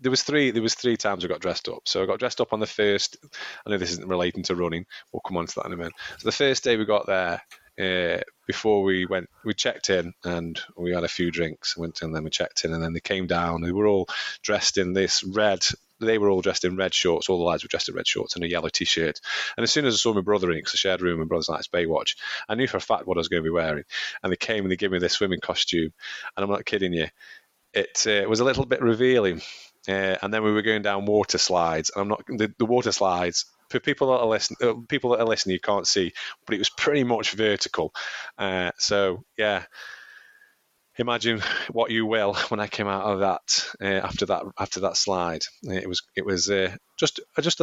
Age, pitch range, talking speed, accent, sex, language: 30-49, 90-115 Hz, 260 wpm, British, male, English